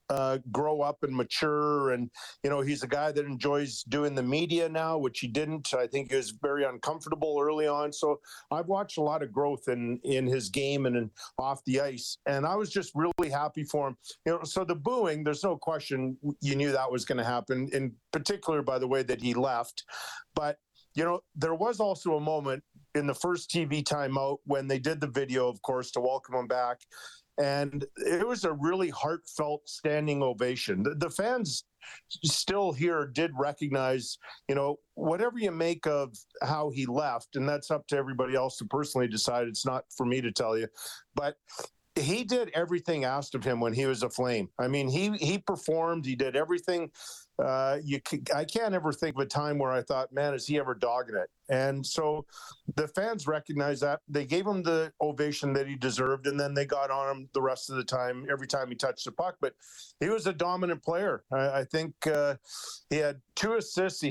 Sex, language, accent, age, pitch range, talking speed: male, English, American, 50-69, 130-160 Hz, 205 wpm